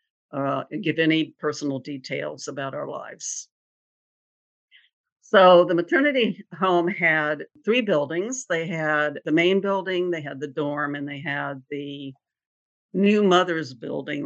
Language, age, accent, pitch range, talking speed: English, 60-79, American, 145-175 Hz, 130 wpm